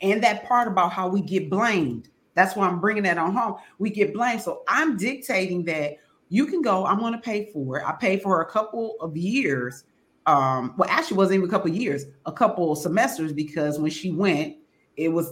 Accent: American